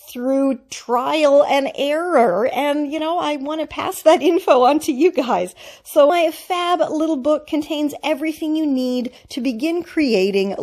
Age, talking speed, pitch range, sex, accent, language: 40-59, 165 wpm, 255-335 Hz, female, American, English